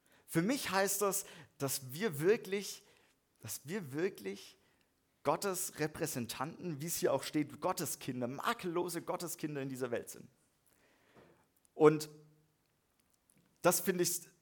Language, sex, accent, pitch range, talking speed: German, male, German, 115-175 Hz, 115 wpm